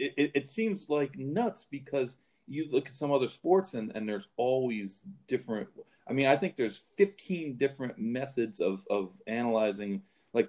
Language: English